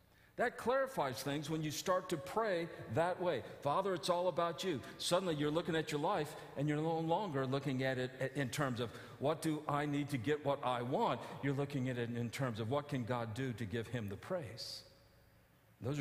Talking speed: 215 wpm